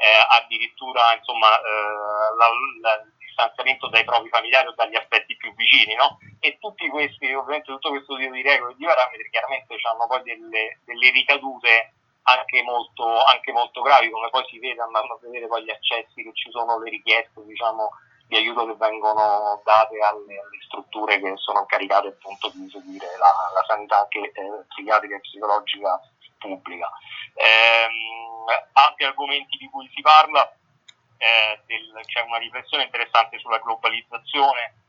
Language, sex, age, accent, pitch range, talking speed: Italian, male, 30-49, native, 110-120 Hz, 160 wpm